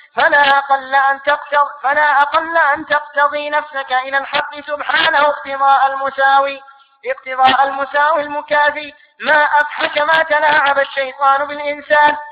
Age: 20-39